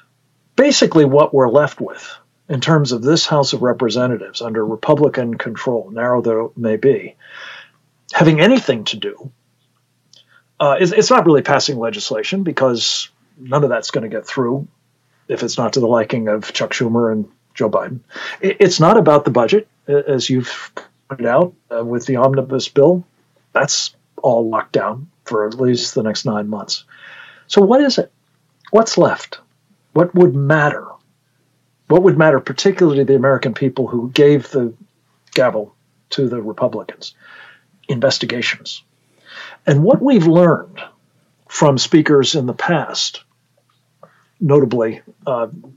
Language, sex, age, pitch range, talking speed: English, male, 50-69, 125-170 Hz, 150 wpm